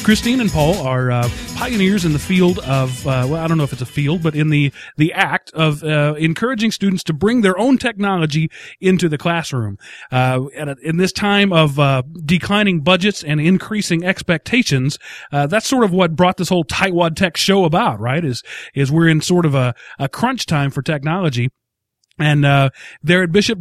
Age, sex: 30-49, male